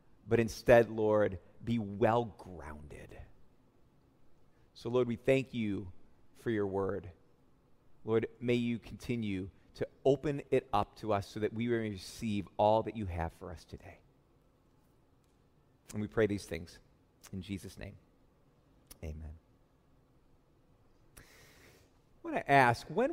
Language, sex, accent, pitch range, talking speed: English, male, American, 110-170 Hz, 125 wpm